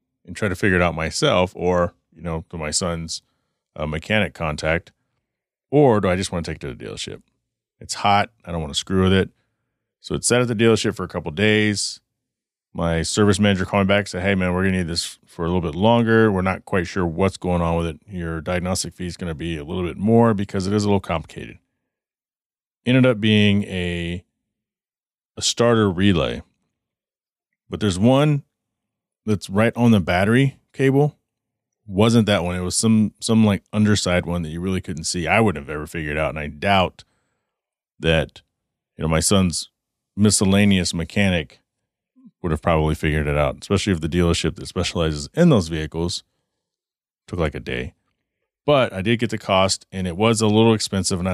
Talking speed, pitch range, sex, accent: 200 wpm, 85-110 Hz, male, American